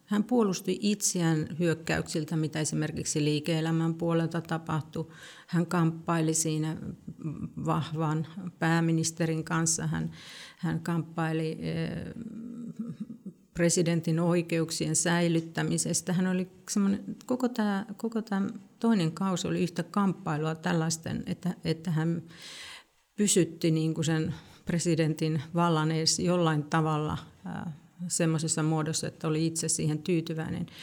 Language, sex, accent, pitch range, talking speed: Finnish, female, native, 160-185 Hz, 100 wpm